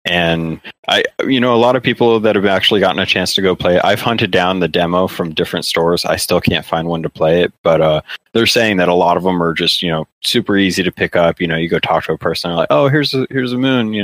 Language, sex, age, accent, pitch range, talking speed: English, male, 30-49, American, 80-100 Hz, 285 wpm